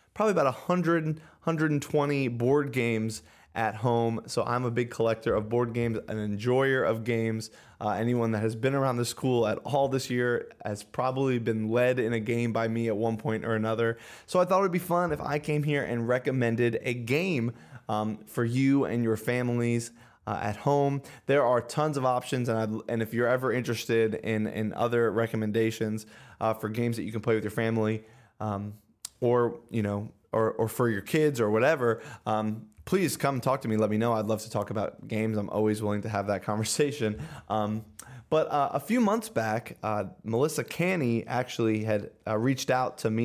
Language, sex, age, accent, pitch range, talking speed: English, male, 20-39, American, 110-125 Hz, 205 wpm